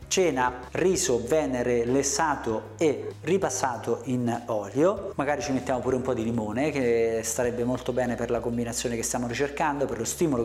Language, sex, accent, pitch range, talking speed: Italian, male, native, 125-165 Hz, 165 wpm